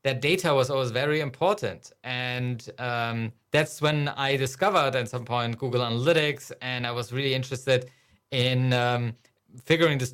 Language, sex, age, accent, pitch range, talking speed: English, male, 20-39, German, 120-145 Hz, 155 wpm